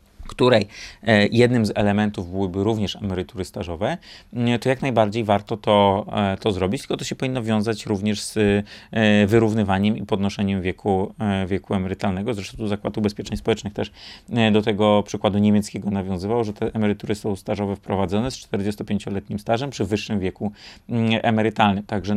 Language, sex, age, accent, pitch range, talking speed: Polish, male, 30-49, native, 100-115 Hz, 145 wpm